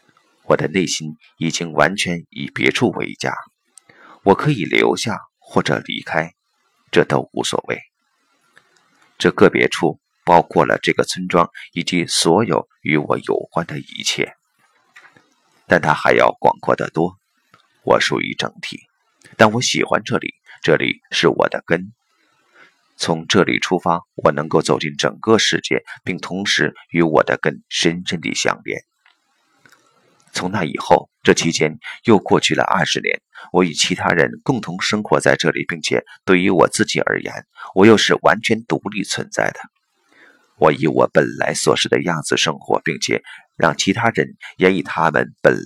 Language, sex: Chinese, male